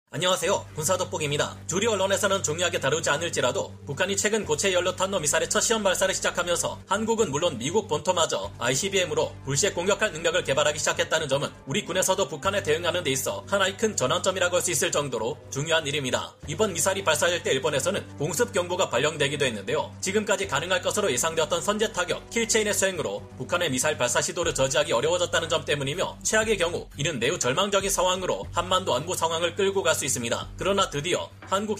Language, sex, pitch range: Korean, male, 165-210 Hz